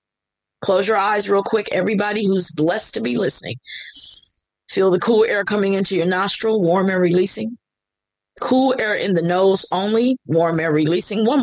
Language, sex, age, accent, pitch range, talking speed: English, female, 30-49, American, 155-210 Hz, 170 wpm